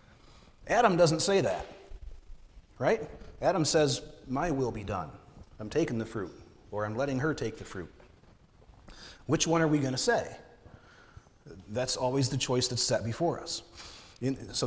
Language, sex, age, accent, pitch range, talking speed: English, male, 30-49, American, 115-145 Hz, 155 wpm